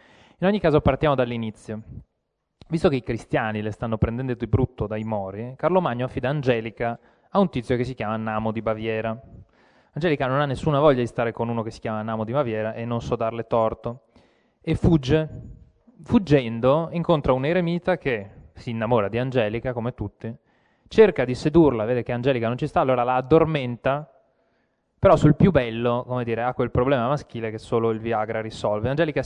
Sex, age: male, 20-39